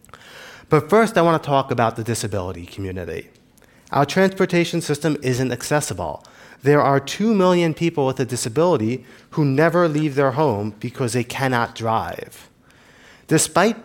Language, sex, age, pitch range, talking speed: English, male, 30-49, 115-150 Hz, 145 wpm